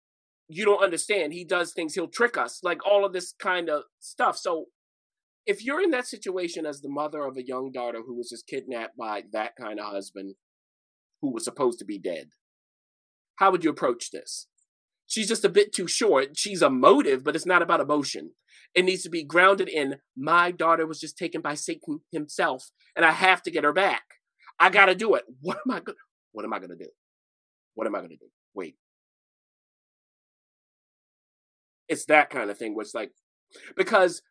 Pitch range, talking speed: 140-200 Hz, 190 wpm